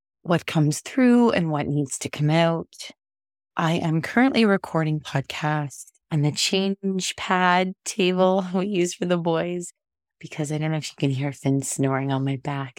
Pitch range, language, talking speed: 140-175 Hz, English, 175 wpm